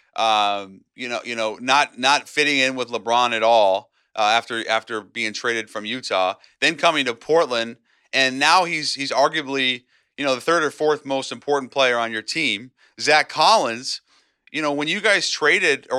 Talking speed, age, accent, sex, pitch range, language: 190 wpm, 30-49, American, male, 120-150 Hz, English